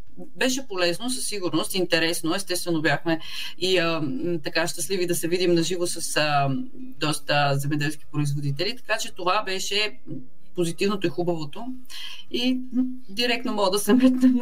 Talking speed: 140 wpm